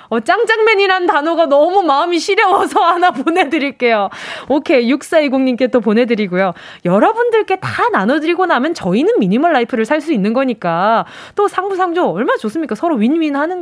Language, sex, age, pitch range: Korean, female, 20-39, 215-345 Hz